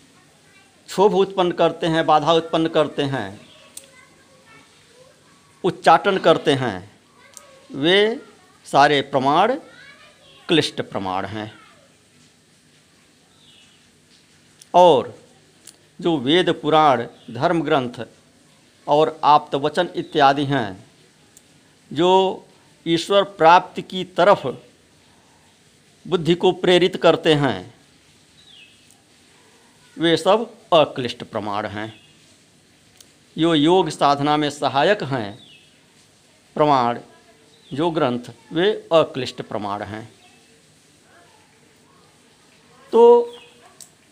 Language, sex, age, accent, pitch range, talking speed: Hindi, male, 50-69, native, 135-185 Hz, 80 wpm